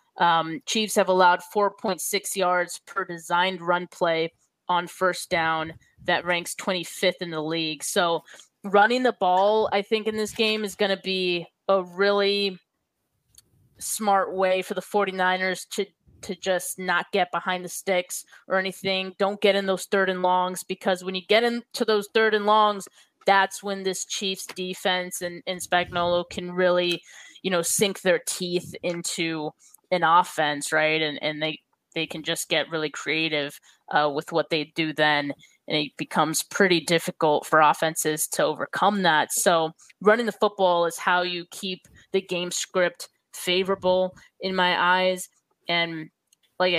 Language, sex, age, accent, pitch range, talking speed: English, female, 20-39, American, 165-195 Hz, 160 wpm